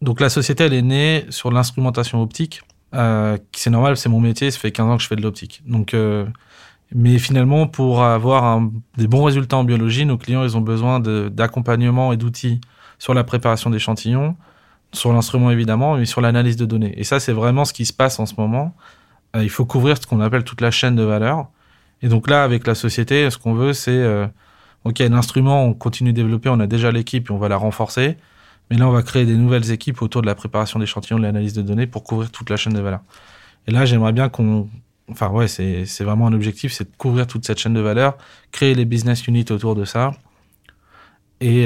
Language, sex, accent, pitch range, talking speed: French, male, French, 110-125 Hz, 230 wpm